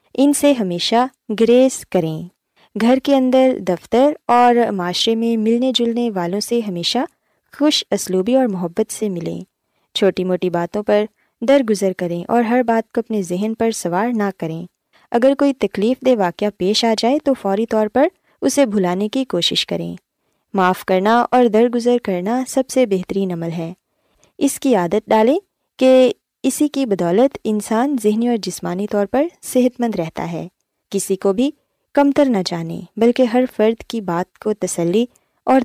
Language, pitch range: Urdu, 185-250 Hz